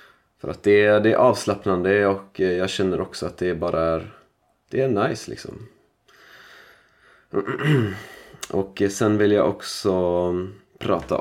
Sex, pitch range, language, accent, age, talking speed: male, 85-105 Hz, Swedish, native, 20-39, 130 wpm